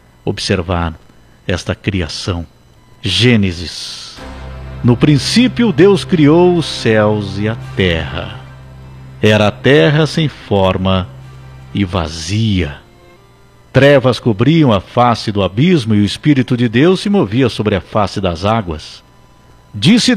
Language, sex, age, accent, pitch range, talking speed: Portuguese, male, 60-79, Brazilian, 100-160 Hz, 115 wpm